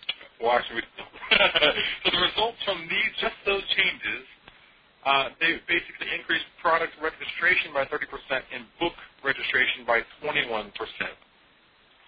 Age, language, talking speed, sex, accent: 40-59, English, 115 wpm, male, American